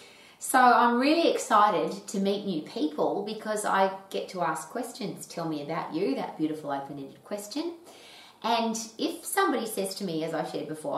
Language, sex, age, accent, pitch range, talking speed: English, female, 30-49, Australian, 155-205 Hz, 175 wpm